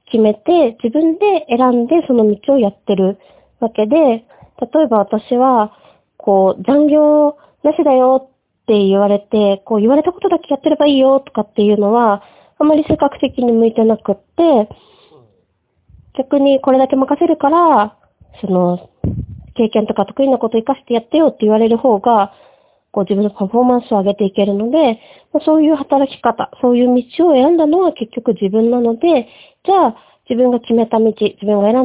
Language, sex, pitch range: Japanese, female, 210-290 Hz